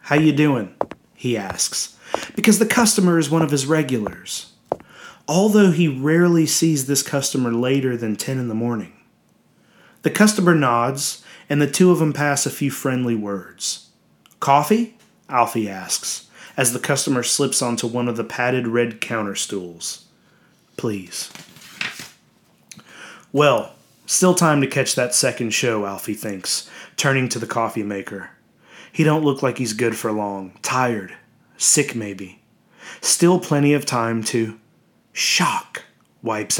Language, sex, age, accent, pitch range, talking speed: English, male, 30-49, American, 115-155 Hz, 145 wpm